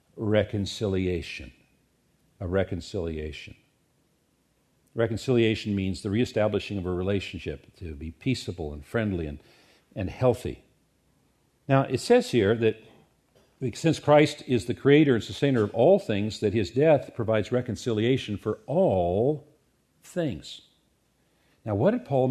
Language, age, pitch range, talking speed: English, 50-69, 110-145 Hz, 120 wpm